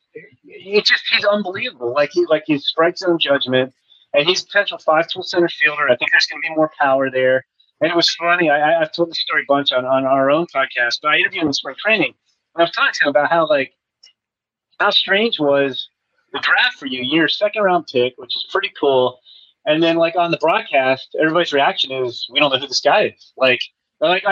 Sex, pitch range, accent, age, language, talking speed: male, 135-180 Hz, American, 30-49, English, 220 wpm